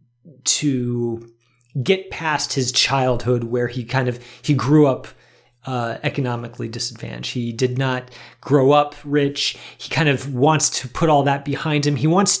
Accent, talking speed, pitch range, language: American, 160 wpm, 125-145 Hz, English